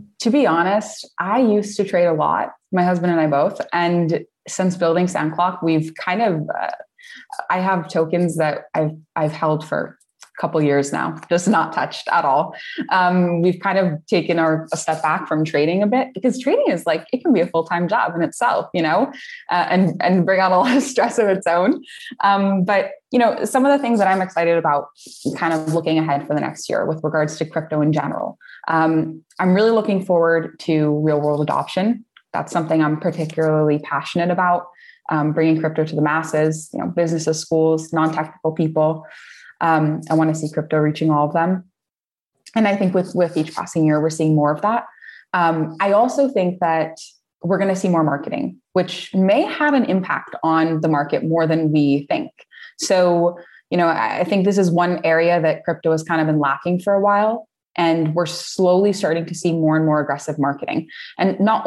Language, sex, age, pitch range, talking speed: English, female, 20-39, 155-190 Hz, 205 wpm